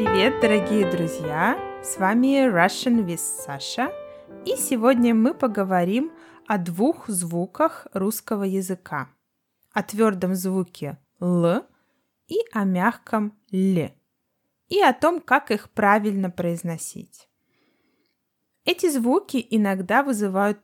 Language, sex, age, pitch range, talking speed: Russian, female, 20-39, 190-260 Hz, 105 wpm